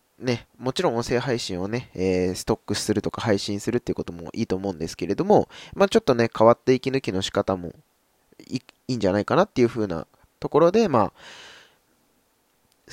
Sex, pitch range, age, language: male, 95-120 Hz, 20-39, Japanese